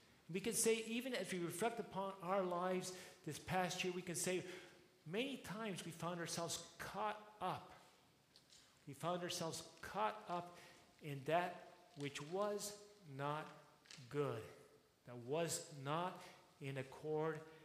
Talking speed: 135 wpm